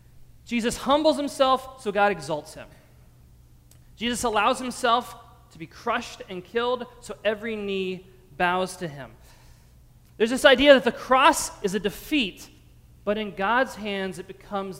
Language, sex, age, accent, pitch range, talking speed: English, male, 30-49, American, 145-225 Hz, 145 wpm